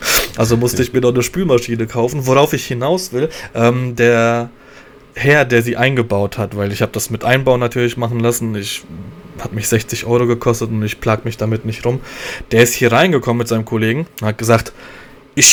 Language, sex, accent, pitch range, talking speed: German, male, German, 115-140 Hz, 195 wpm